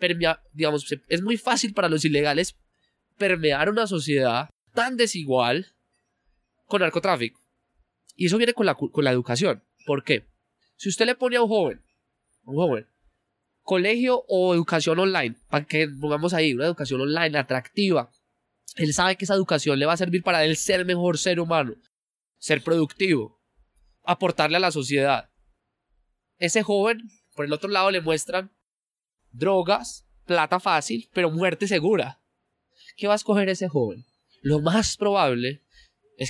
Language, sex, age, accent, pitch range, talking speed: Spanish, male, 20-39, Colombian, 145-195 Hz, 150 wpm